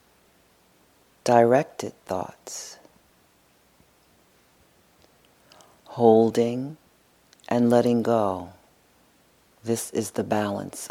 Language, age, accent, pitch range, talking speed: English, 40-59, American, 105-130 Hz, 55 wpm